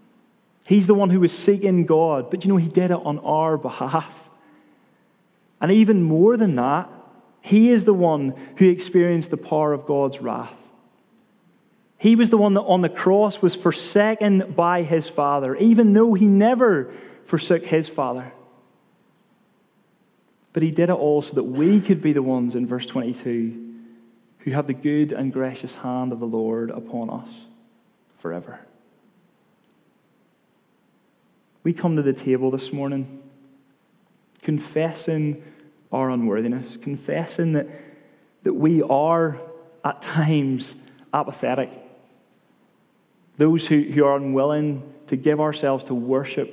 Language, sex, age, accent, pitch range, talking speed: English, male, 30-49, British, 130-175 Hz, 140 wpm